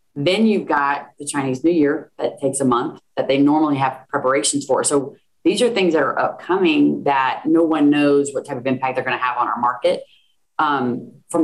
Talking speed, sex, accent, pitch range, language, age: 210 wpm, female, American, 135-160 Hz, English, 30-49